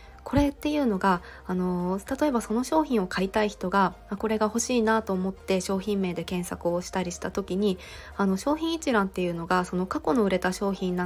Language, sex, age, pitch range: Japanese, female, 20-39, 180-235 Hz